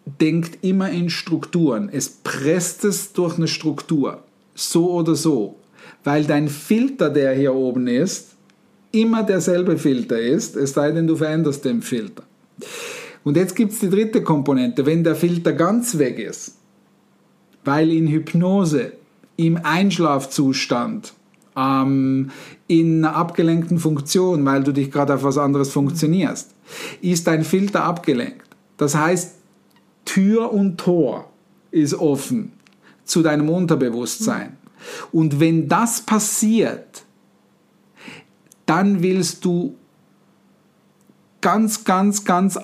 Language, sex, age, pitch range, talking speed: German, male, 50-69, 150-190 Hz, 120 wpm